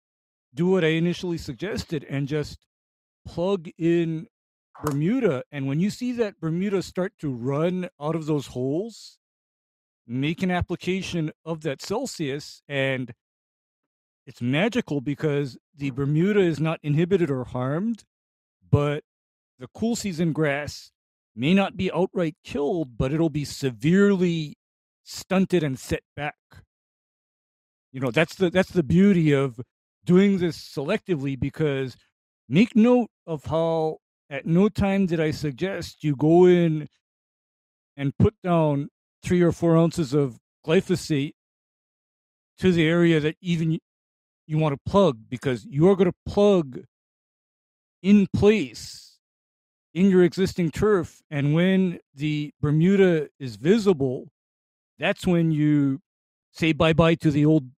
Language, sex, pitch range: English, male, 140-180 Hz